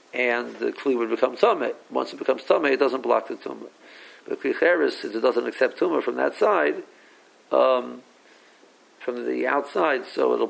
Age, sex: 60-79, male